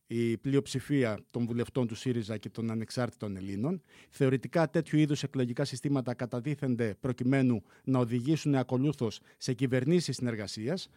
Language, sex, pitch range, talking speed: Greek, male, 120-160 Hz, 125 wpm